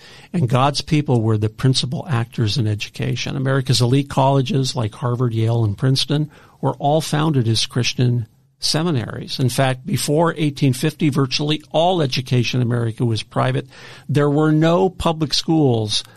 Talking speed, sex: 145 wpm, male